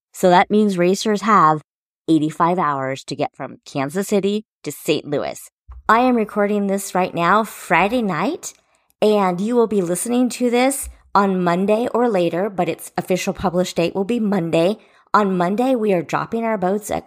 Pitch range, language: 165-230 Hz, English